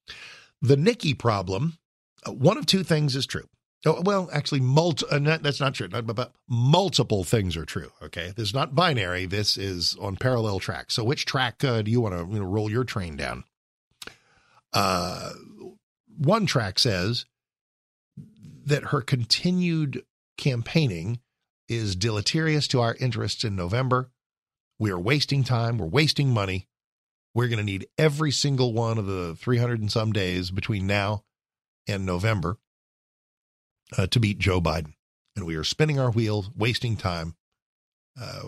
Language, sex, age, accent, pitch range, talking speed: English, male, 50-69, American, 95-135 Hz, 150 wpm